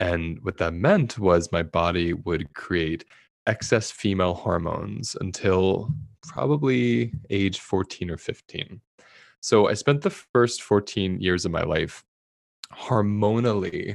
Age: 20-39